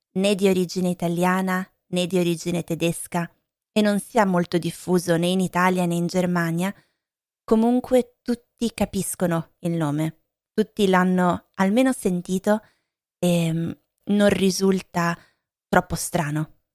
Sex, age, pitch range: female, 20-39, 170-195 Hz